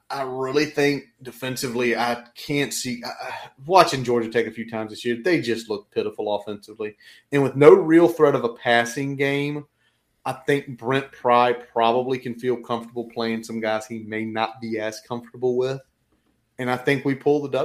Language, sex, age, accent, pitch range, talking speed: English, male, 30-49, American, 115-135 Hz, 180 wpm